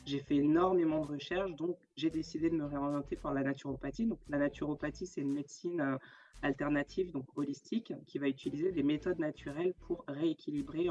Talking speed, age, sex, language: 170 wpm, 20-39, female, French